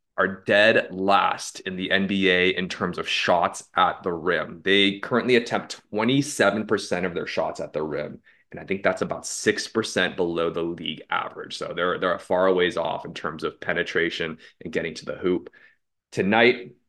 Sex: male